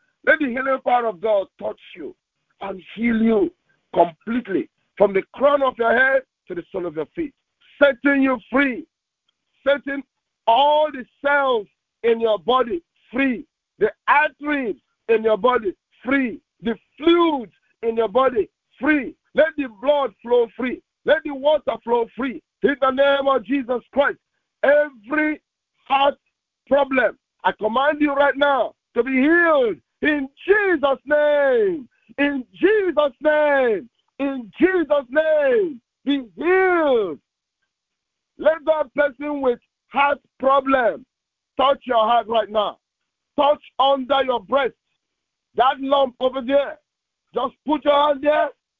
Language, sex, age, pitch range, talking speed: English, male, 50-69, 255-305 Hz, 135 wpm